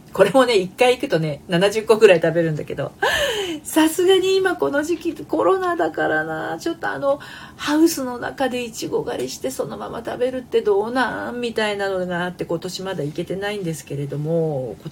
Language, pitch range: Japanese, 155-250 Hz